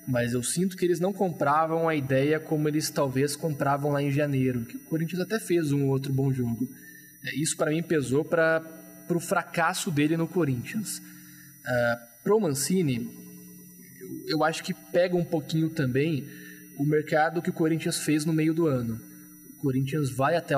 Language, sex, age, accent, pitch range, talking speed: Portuguese, male, 20-39, Brazilian, 135-165 Hz, 175 wpm